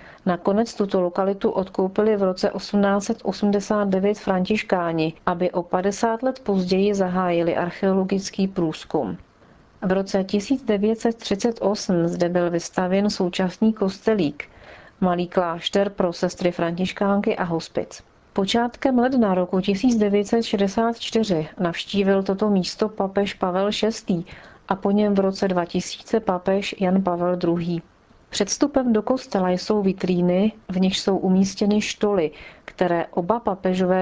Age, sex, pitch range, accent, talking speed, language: 40-59, female, 180-205 Hz, native, 115 wpm, Czech